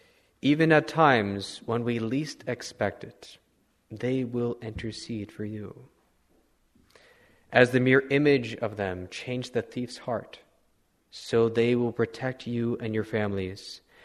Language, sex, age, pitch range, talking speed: English, male, 30-49, 100-120 Hz, 130 wpm